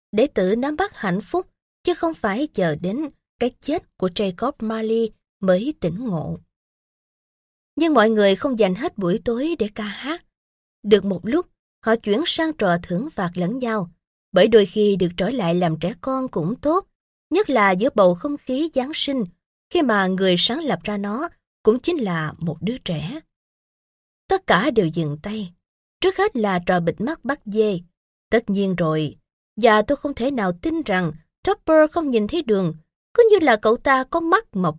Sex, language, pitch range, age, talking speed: female, Vietnamese, 185-300 Hz, 20-39, 190 wpm